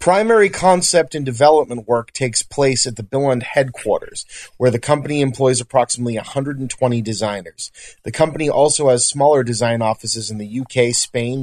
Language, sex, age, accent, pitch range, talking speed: English, male, 30-49, American, 115-135 Hz, 150 wpm